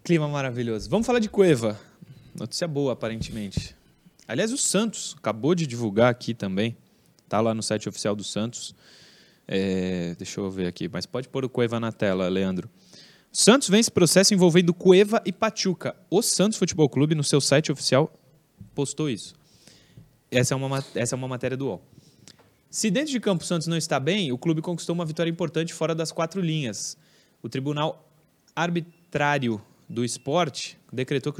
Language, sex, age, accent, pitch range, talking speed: Portuguese, male, 20-39, Brazilian, 125-165 Hz, 170 wpm